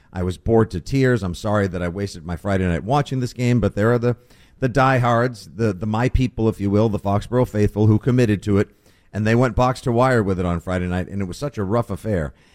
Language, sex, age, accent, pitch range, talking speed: English, male, 50-69, American, 95-130 Hz, 260 wpm